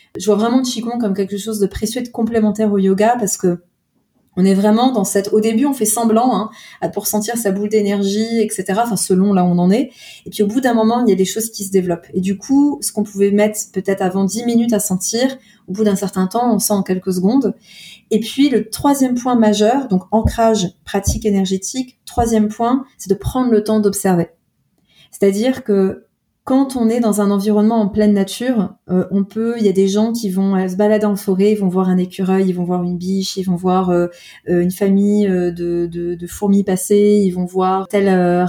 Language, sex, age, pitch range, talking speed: French, female, 30-49, 190-225 Hz, 230 wpm